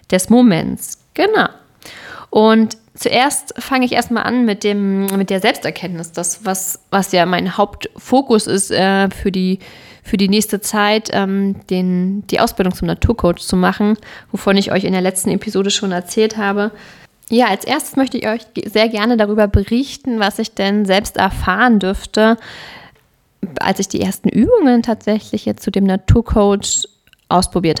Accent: German